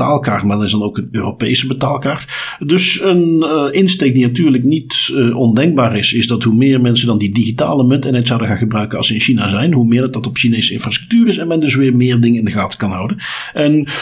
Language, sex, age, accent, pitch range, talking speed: Dutch, male, 50-69, Dutch, 115-135 Hz, 250 wpm